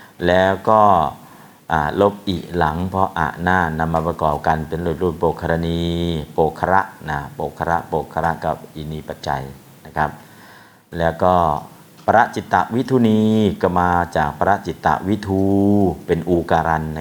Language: Thai